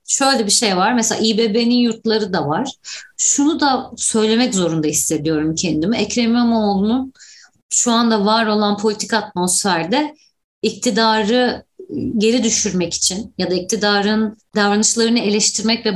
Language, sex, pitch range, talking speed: Turkish, female, 180-245 Hz, 125 wpm